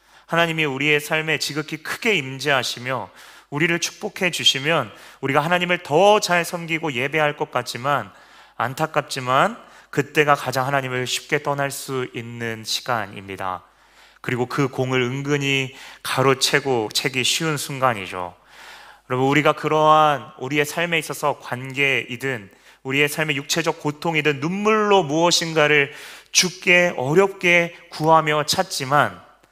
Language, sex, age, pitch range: Korean, male, 30-49, 125-160 Hz